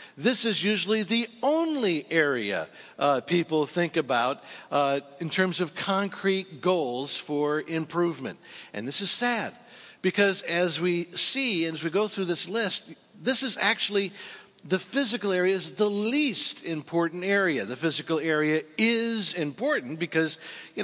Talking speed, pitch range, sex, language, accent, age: 145 wpm, 160-200 Hz, male, English, American, 60-79